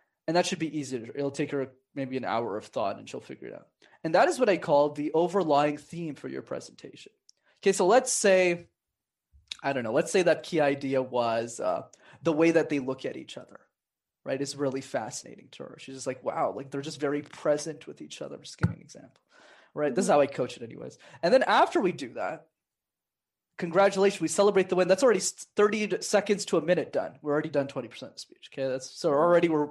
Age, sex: 20-39, male